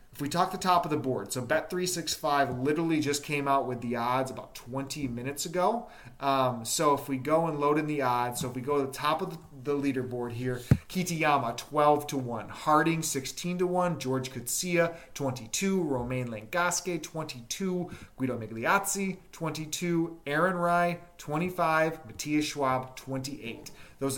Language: English